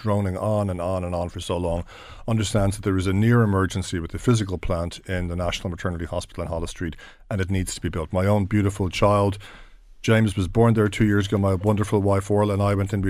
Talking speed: 250 wpm